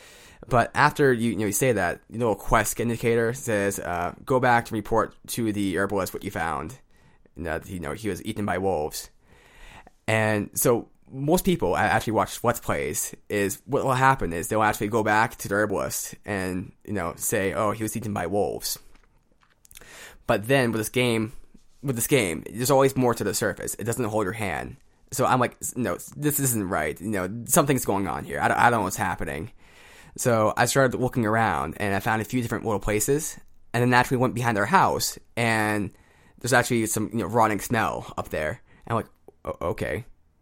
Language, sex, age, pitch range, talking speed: English, male, 20-39, 100-120 Hz, 200 wpm